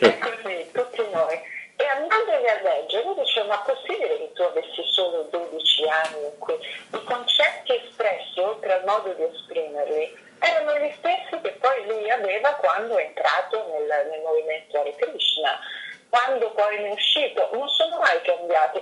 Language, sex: Italian, female